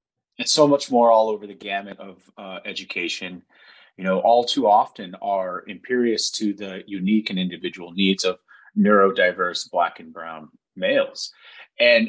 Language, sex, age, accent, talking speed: English, male, 30-49, American, 155 wpm